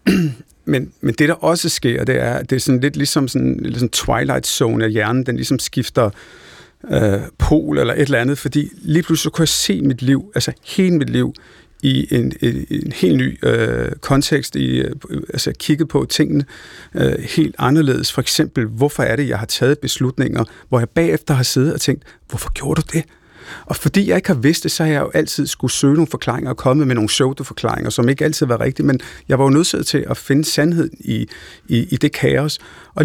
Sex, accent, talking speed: male, native, 220 wpm